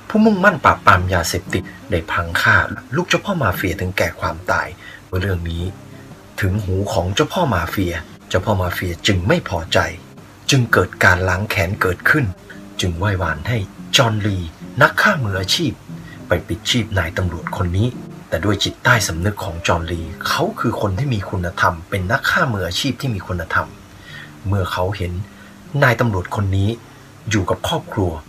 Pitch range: 90-110 Hz